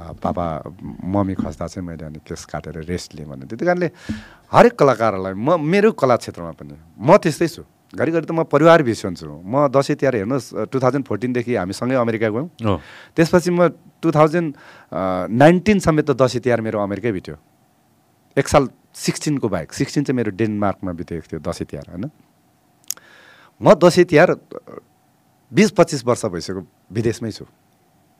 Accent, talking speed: Indian, 55 wpm